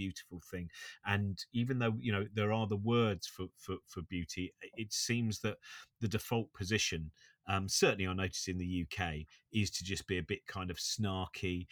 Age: 40-59